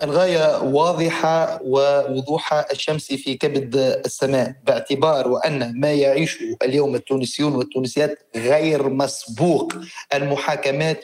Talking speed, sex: 90 wpm, male